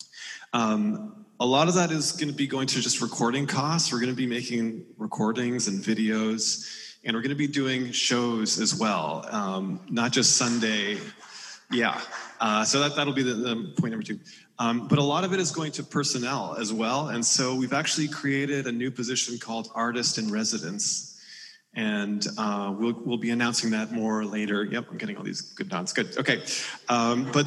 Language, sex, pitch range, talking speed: English, male, 110-145 Hz, 190 wpm